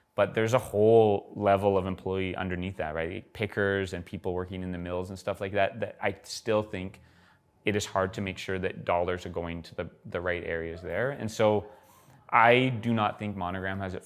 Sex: male